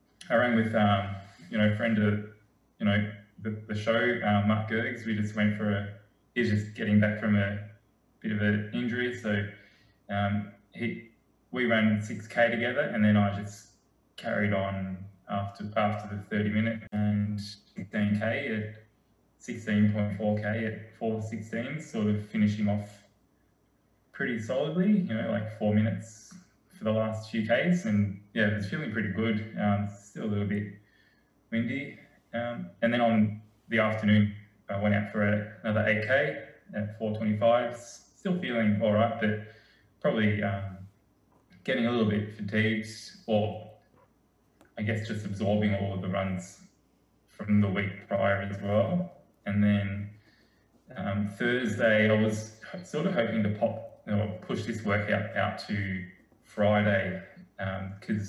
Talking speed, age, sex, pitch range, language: 160 wpm, 20-39, male, 100-110 Hz, English